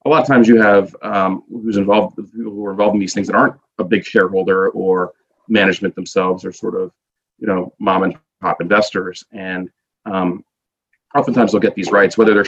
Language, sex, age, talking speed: English, male, 30-49, 200 wpm